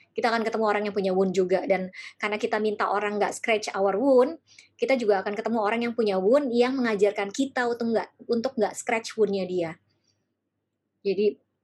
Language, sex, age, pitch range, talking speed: Indonesian, male, 20-39, 190-230 Hz, 185 wpm